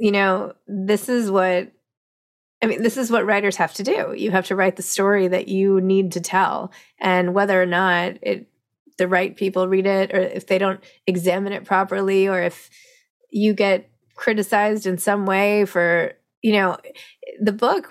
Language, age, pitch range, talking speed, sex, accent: English, 20-39, 185-230 Hz, 185 wpm, female, American